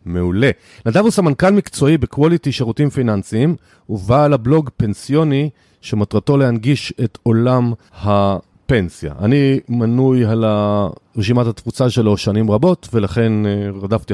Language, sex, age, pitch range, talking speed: Hebrew, male, 40-59, 105-140 Hz, 110 wpm